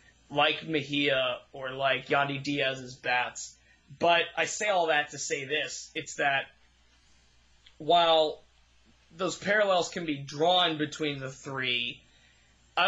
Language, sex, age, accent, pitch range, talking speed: English, male, 20-39, American, 140-180 Hz, 125 wpm